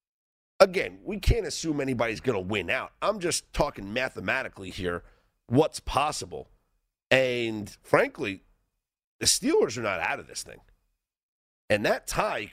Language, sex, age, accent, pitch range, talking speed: English, male, 40-59, American, 105-160 Hz, 140 wpm